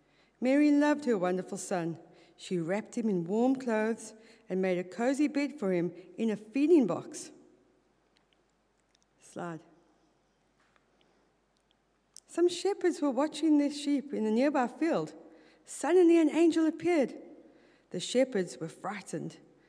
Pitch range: 190-285 Hz